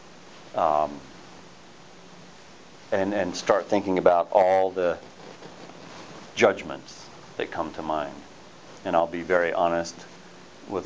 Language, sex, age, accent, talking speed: English, male, 40-59, American, 105 wpm